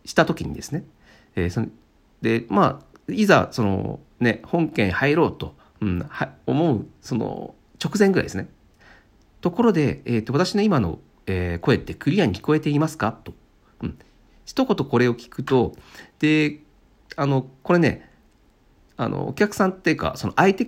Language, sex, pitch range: Japanese, male, 100-160 Hz